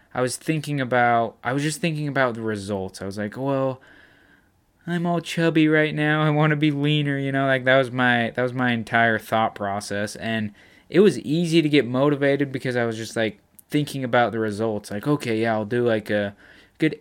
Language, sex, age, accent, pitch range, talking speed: English, male, 20-39, American, 110-145 Hz, 215 wpm